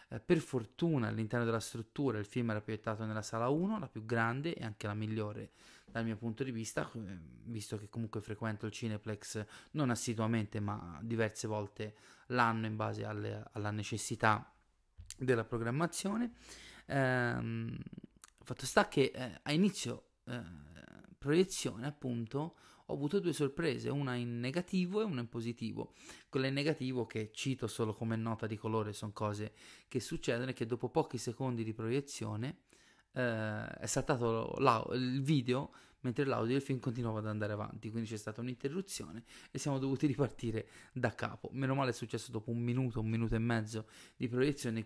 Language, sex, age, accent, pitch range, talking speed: Italian, male, 30-49, native, 110-130 Hz, 160 wpm